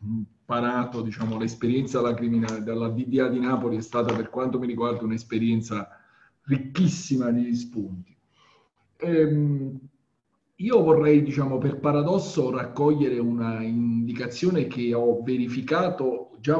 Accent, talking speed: native, 115 wpm